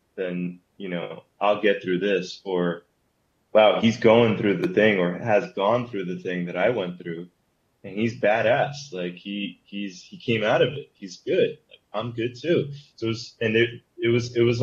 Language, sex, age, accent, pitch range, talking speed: English, male, 20-39, American, 90-115 Hz, 190 wpm